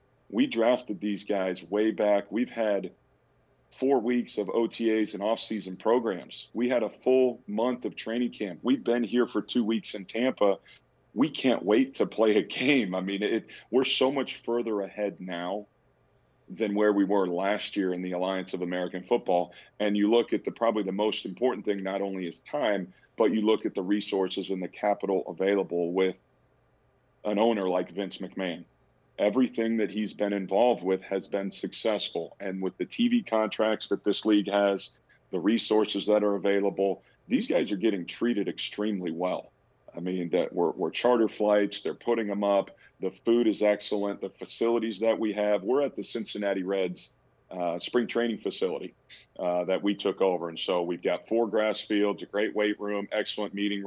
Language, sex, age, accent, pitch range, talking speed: English, male, 40-59, American, 95-115 Hz, 185 wpm